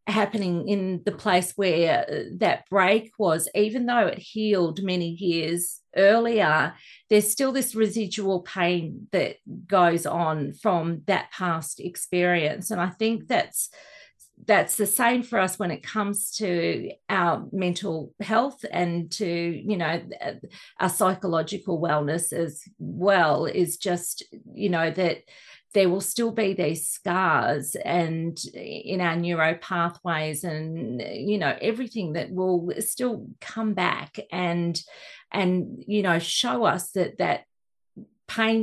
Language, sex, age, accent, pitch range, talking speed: English, female, 40-59, Australian, 170-215 Hz, 135 wpm